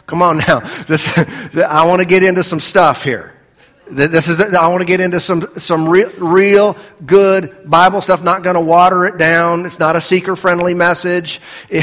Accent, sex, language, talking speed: American, male, English, 190 wpm